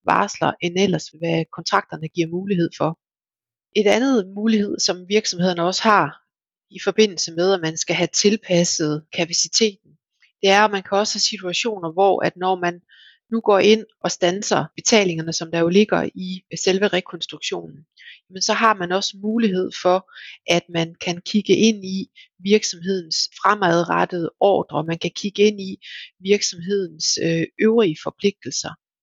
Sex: female